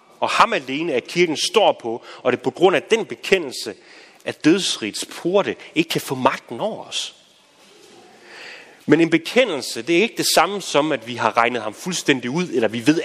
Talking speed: 200 wpm